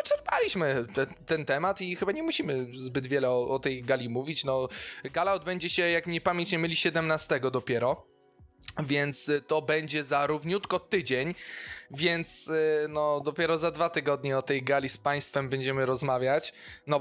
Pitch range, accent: 130-155 Hz, native